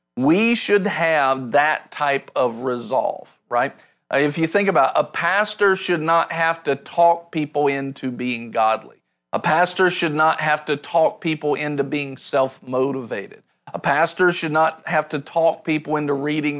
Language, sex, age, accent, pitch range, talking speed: English, male, 50-69, American, 145-195 Hz, 165 wpm